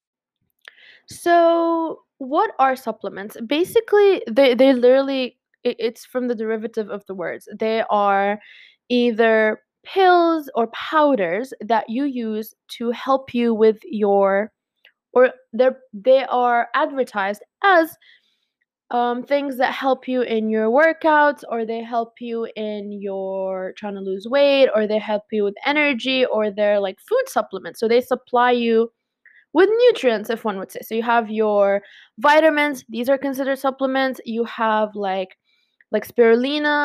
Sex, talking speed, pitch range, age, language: female, 145 wpm, 215-275 Hz, 20-39, English